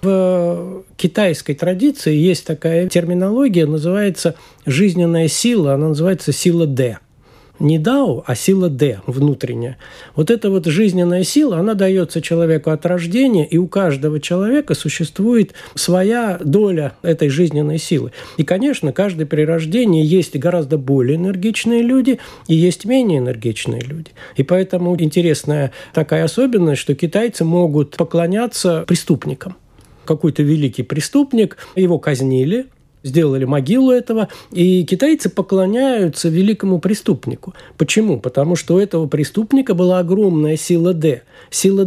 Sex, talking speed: male, 125 wpm